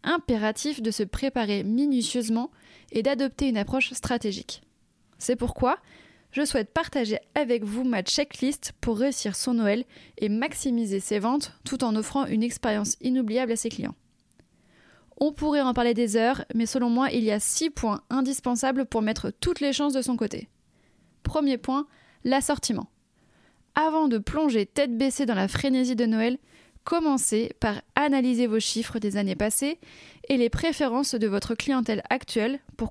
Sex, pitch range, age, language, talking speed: female, 225-275 Hz, 20-39, French, 160 wpm